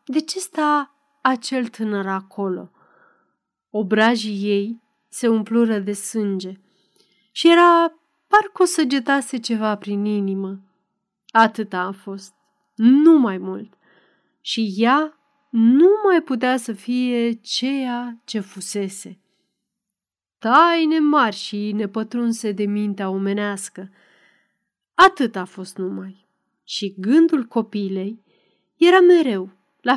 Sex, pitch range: female, 200-275 Hz